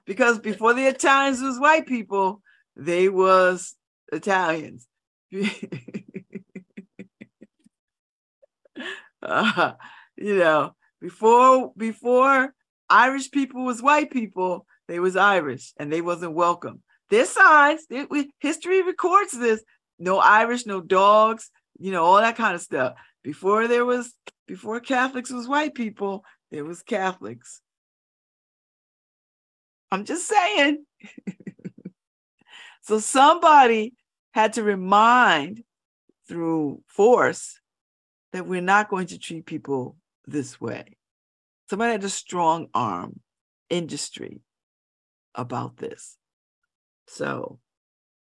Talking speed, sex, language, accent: 100 wpm, female, English, American